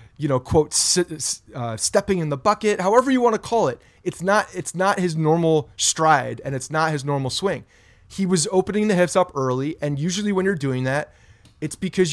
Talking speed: 210 wpm